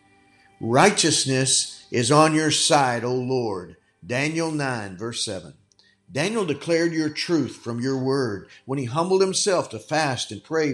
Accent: American